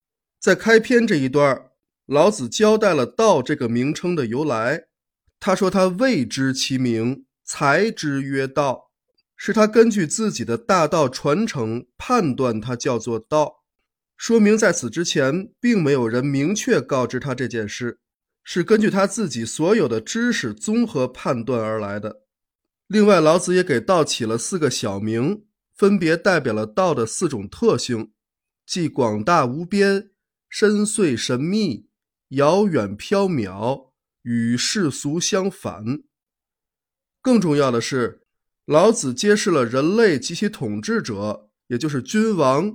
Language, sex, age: Chinese, male, 20-39